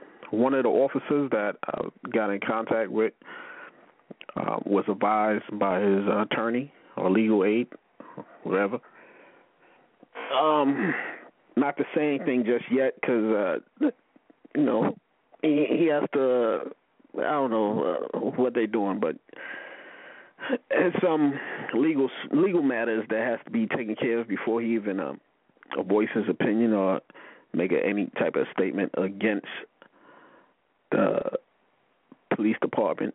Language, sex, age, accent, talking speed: English, male, 40-59, American, 140 wpm